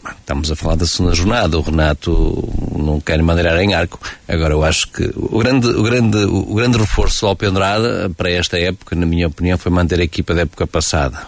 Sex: male